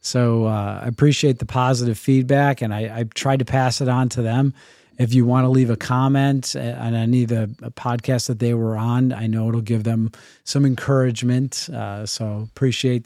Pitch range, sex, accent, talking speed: 115-145 Hz, male, American, 200 wpm